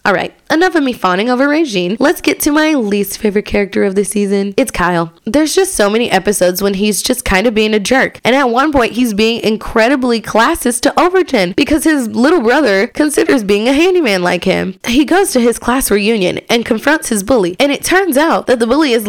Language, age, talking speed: English, 20-39, 220 wpm